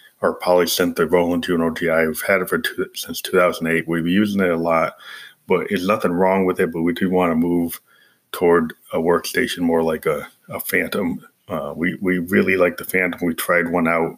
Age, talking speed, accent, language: 30-49, 210 wpm, American, English